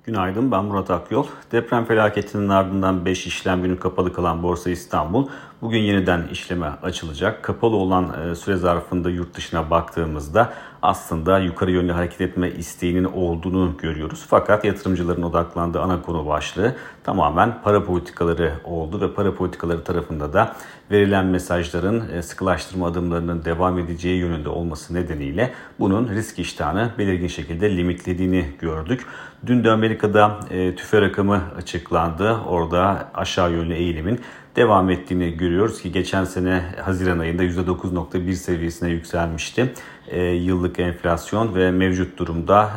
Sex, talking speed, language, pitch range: male, 130 wpm, Turkish, 85-100 Hz